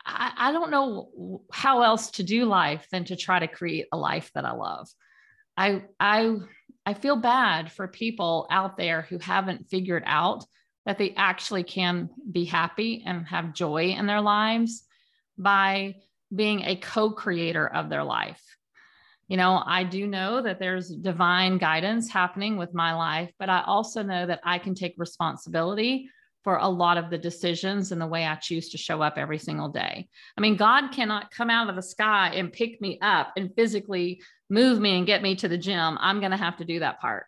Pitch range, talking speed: 175-210 Hz, 190 wpm